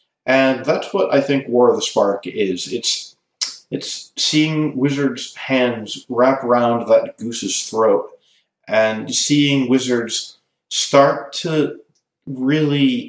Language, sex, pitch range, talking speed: English, male, 115-150 Hz, 120 wpm